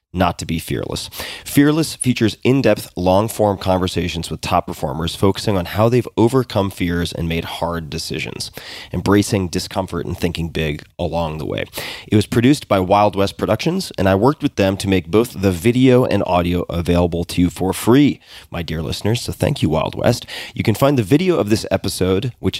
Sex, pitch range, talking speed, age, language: male, 85-110 Hz, 190 wpm, 30-49, English